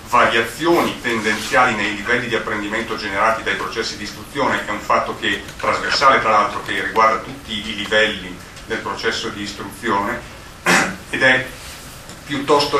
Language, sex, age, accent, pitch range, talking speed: Italian, male, 40-59, native, 110-130 Hz, 140 wpm